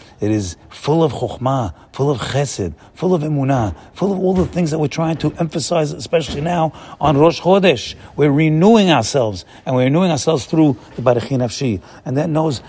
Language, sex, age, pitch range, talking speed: English, male, 40-59, 130-170 Hz, 190 wpm